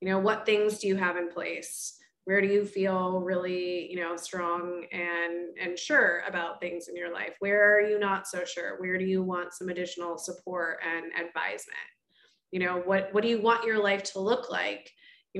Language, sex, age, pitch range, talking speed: English, female, 20-39, 185-210 Hz, 205 wpm